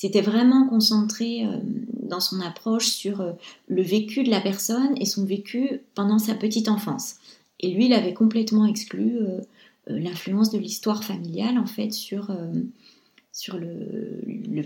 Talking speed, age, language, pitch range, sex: 155 wpm, 30-49, French, 195-230 Hz, female